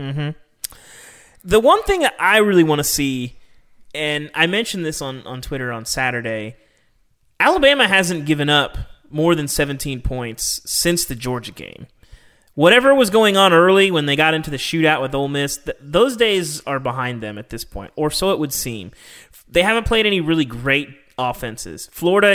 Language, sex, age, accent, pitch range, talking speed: English, male, 30-49, American, 125-175 Hz, 180 wpm